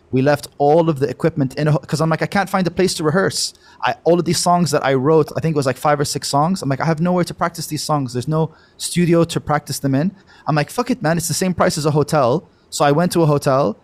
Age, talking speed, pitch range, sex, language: 20-39, 295 wpm, 135-170 Hz, male, Arabic